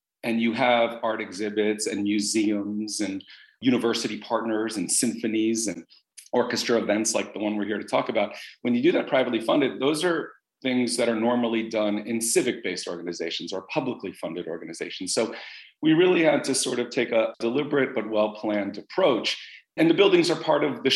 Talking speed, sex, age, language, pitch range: 180 wpm, male, 40-59, English, 105-120 Hz